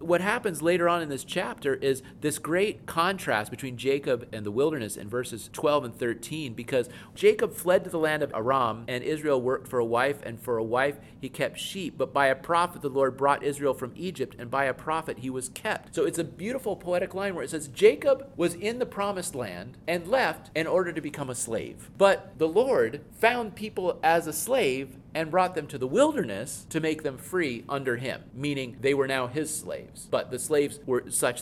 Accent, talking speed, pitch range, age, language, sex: American, 215 wpm, 120-175 Hz, 40-59, English, male